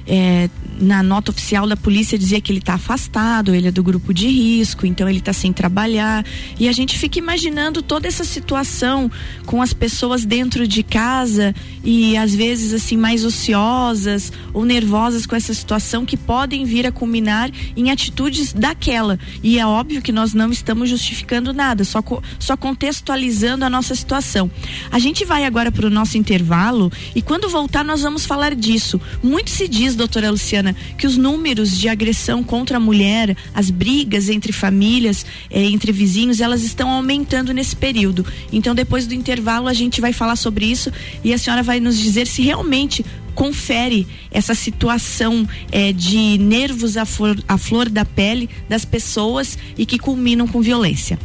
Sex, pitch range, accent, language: female, 210-255 Hz, Brazilian, Portuguese